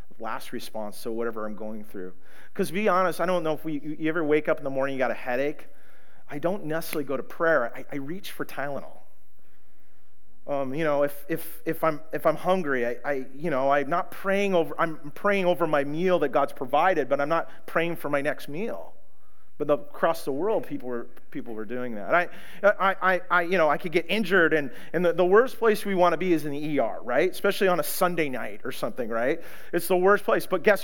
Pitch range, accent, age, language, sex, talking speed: 135-180 Hz, American, 30-49, English, male, 235 wpm